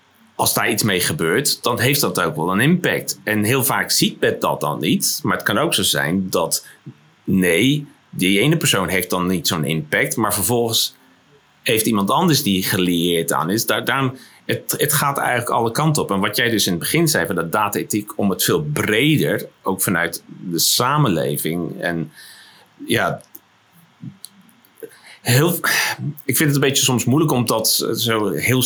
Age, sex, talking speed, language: 40-59, male, 180 wpm, Dutch